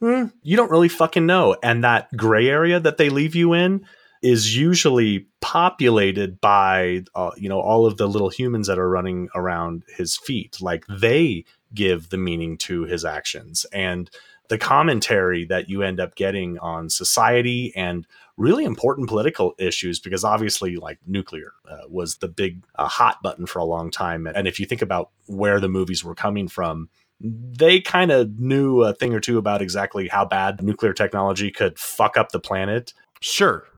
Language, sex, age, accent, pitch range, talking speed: English, male, 30-49, American, 90-120 Hz, 180 wpm